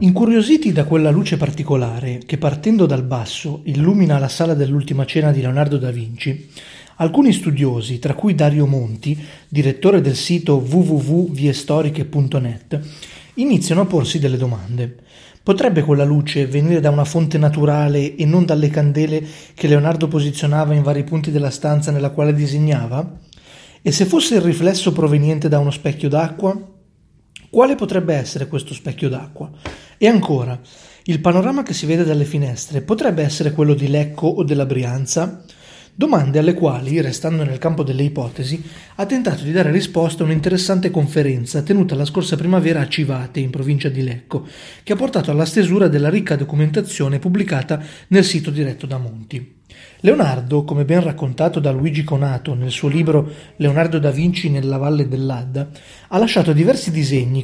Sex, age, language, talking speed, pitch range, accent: male, 30-49, Italian, 155 wpm, 140-165 Hz, native